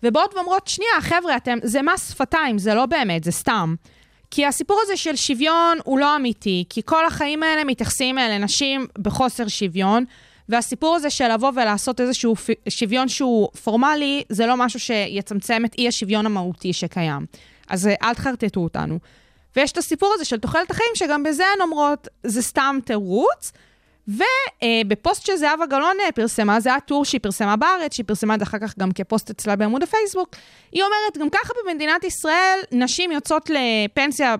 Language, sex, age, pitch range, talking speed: Hebrew, female, 20-39, 210-300 Hz, 165 wpm